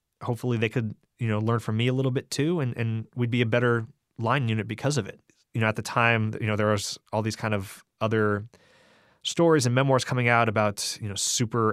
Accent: American